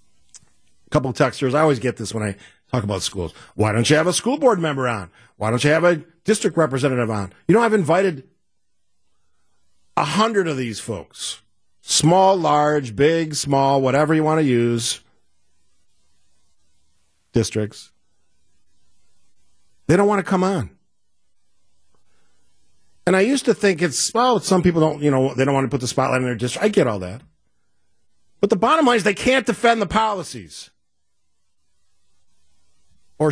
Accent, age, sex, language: American, 50-69, male, English